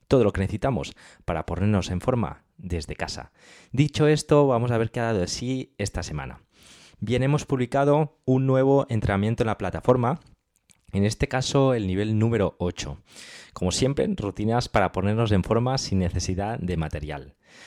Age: 20-39